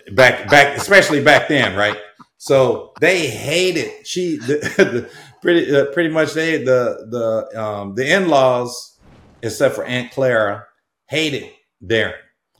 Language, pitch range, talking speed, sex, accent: English, 110-135 Hz, 135 wpm, male, American